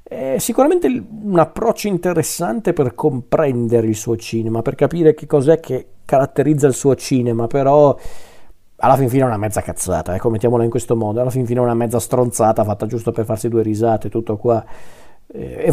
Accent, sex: native, male